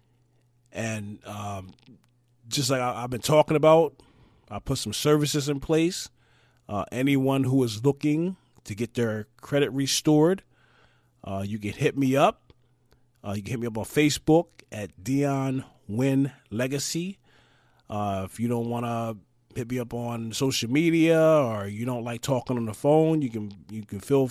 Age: 30-49